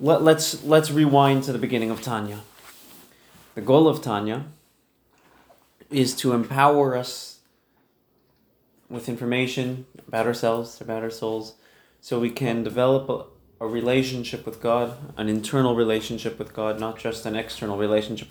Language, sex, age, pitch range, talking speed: English, male, 20-39, 110-130 Hz, 140 wpm